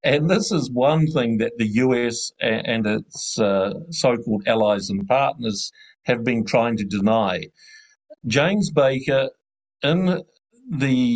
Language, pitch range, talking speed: English, 115-155 Hz, 130 wpm